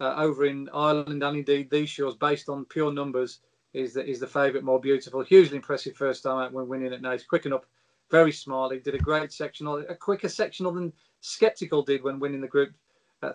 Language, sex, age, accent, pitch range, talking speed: English, male, 40-59, British, 135-160 Hz, 215 wpm